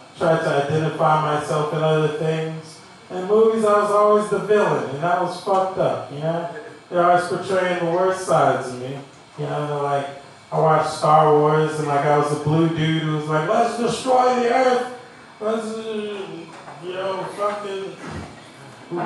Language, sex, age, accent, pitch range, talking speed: English, male, 20-39, American, 155-195 Hz, 175 wpm